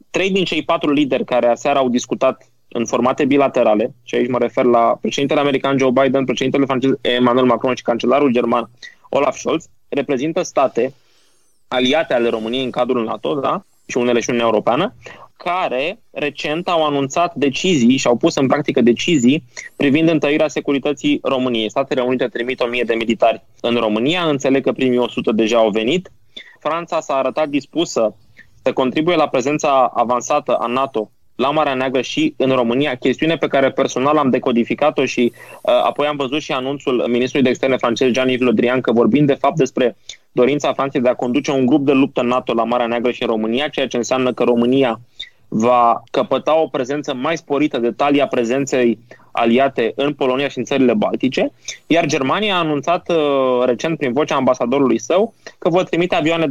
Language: Romanian